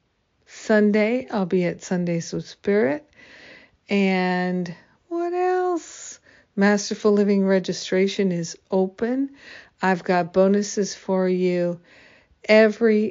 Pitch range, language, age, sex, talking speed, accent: 175-205 Hz, English, 50-69, female, 95 wpm, American